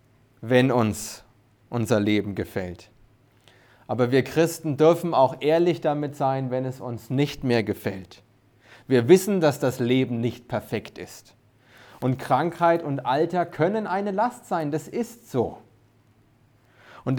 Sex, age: male, 30-49